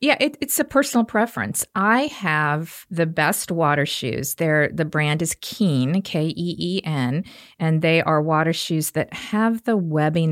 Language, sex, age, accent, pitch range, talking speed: English, female, 50-69, American, 150-190 Hz, 175 wpm